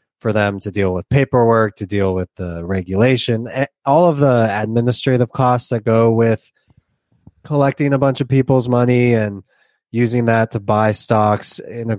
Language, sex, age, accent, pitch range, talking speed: English, male, 20-39, American, 105-125 Hz, 165 wpm